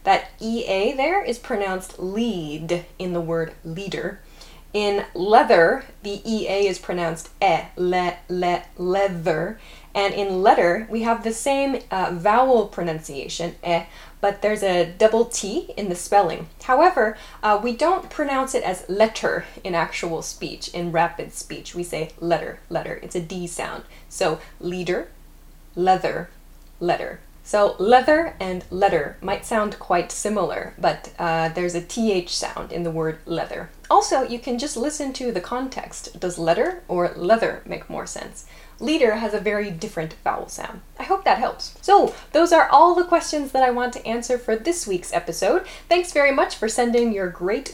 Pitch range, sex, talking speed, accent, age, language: 175-255 Hz, female, 165 wpm, American, 10-29, English